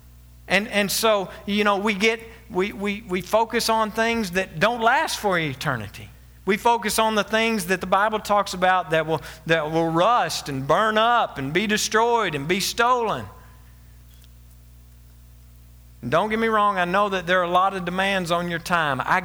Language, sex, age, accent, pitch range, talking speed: English, male, 50-69, American, 155-215 Hz, 185 wpm